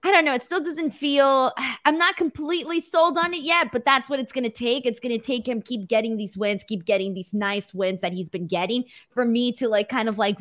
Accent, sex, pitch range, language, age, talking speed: American, female, 210-295 Hz, English, 20-39, 265 wpm